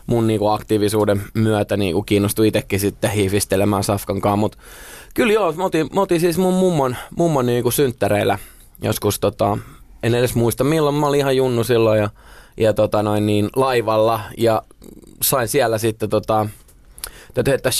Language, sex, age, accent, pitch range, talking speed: Finnish, male, 20-39, native, 105-120 Hz, 145 wpm